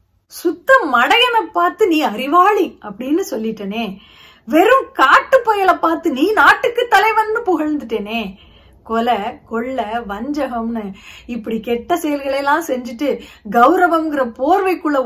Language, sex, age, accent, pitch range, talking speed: Tamil, female, 30-49, native, 235-345 Hz, 90 wpm